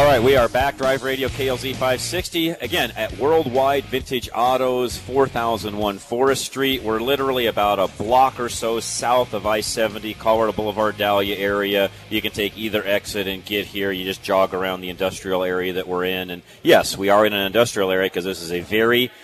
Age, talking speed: 40-59, 195 wpm